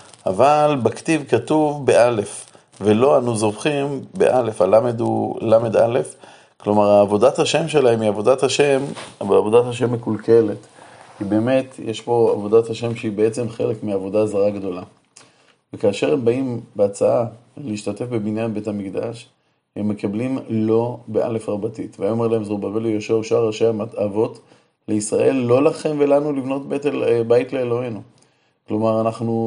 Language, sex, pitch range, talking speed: Hebrew, male, 110-135 Hz, 130 wpm